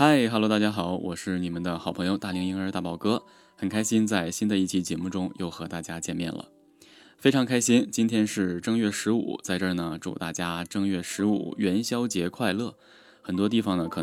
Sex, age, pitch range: male, 20-39, 90-115 Hz